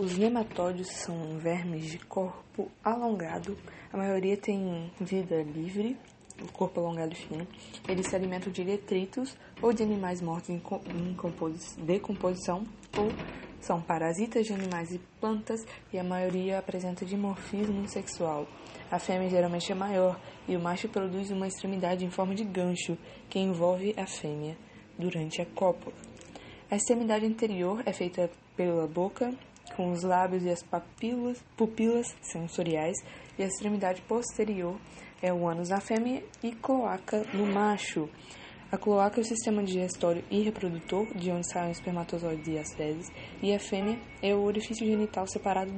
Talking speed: 150 wpm